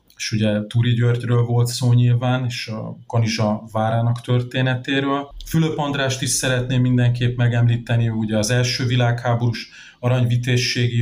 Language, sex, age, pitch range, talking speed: Hungarian, male, 30-49, 110-120 Hz, 125 wpm